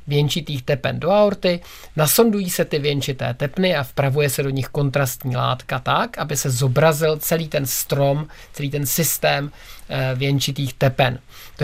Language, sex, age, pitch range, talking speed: Czech, male, 50-69, 135-165 Hz, 155 wpm